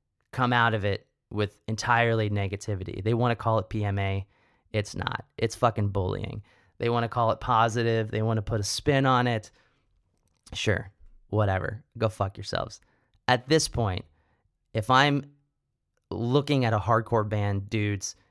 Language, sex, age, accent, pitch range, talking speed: English, male, 30-49, American, 100-130 Hz, 155 wpm